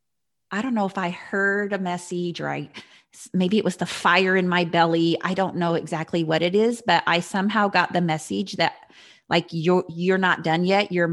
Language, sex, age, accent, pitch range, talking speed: English, female, 30-49, American, 160-185 Hz, 210 wpm